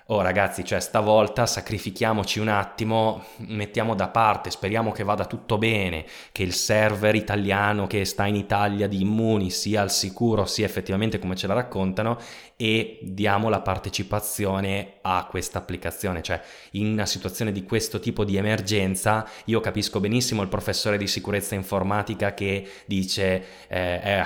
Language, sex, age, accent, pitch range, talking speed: Italian, male, 20-39, native, 90-105 Hz, 150 wpm